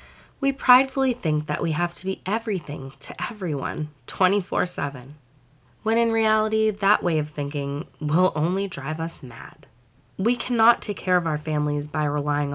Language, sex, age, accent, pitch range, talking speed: English, female, 20-39, American, 145-195 Hz, 160 wpm